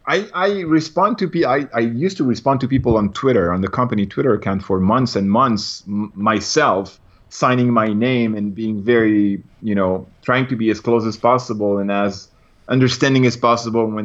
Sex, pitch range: male, 105-135 Hz